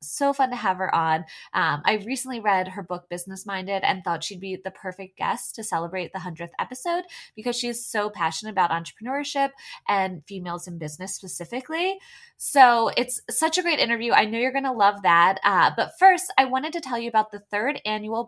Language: English